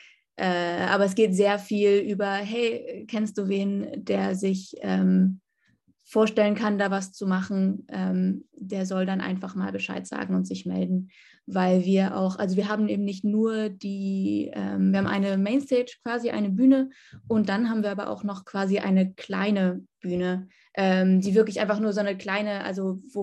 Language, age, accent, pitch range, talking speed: German, 20-39, German, 185-215 Hz, 180 wpm